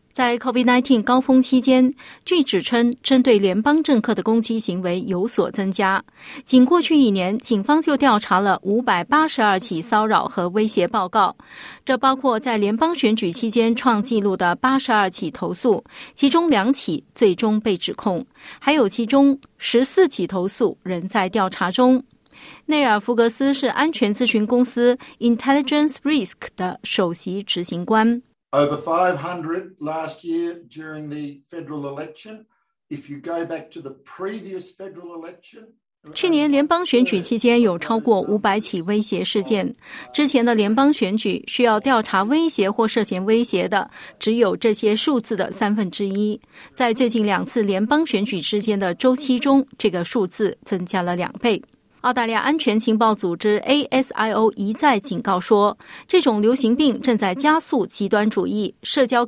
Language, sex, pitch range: Chinese, female, 190-255 Hz